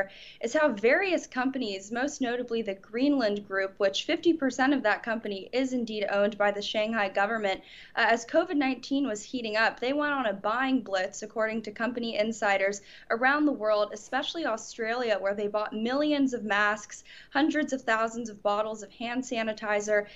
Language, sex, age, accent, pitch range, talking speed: English, female, 10-29, American, 210-260 Hz, 165 wpm